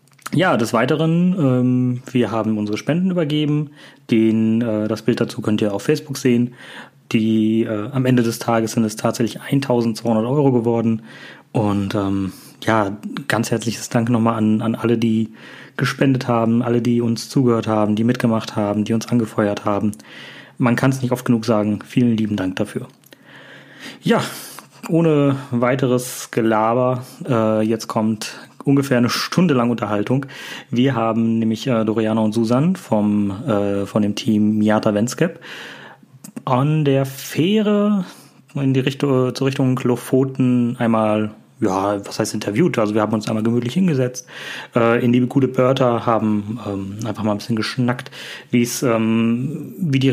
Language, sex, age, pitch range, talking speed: German, male, 30-49, 110-130 Hz, 160 wpm